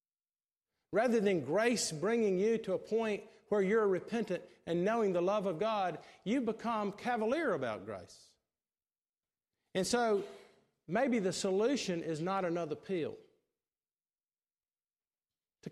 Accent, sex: American, male